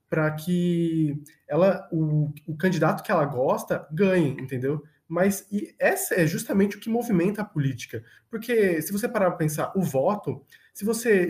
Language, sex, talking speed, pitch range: Portuguese, male, 165 wpm, 150-200 Hz